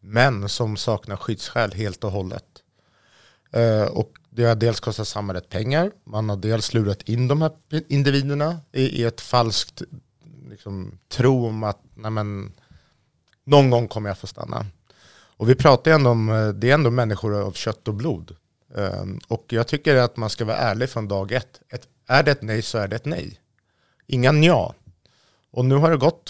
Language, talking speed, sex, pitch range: Swedish, 185 wpm, male, 105-135 Hz